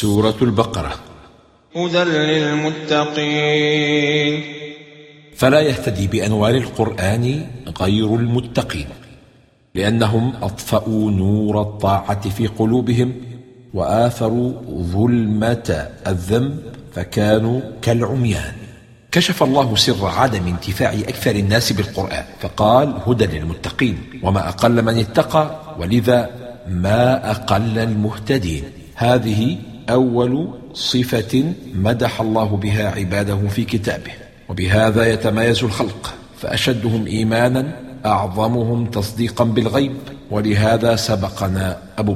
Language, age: English, 50-69